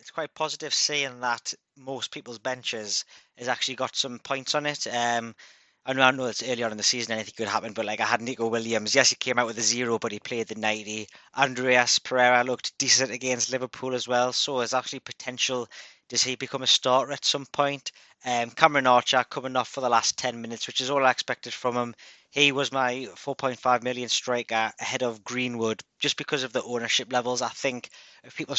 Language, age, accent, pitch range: English, 20-39, British, 115-130 Hz